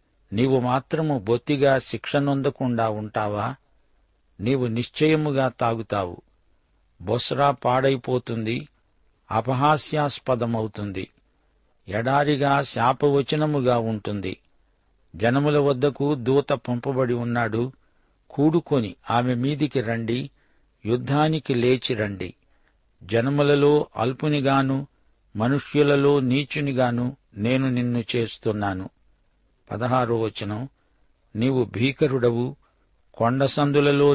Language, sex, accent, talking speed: Telugu, male, native, 65 wpm